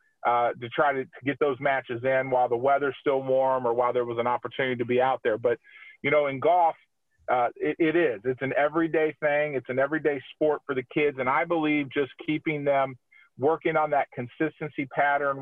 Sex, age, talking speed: male, 40-59, 215 wpm